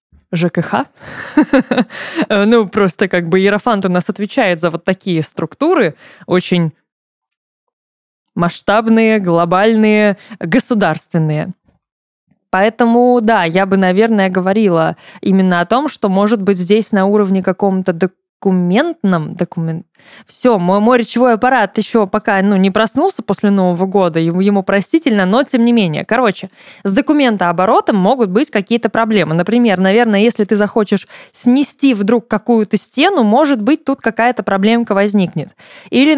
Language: Russian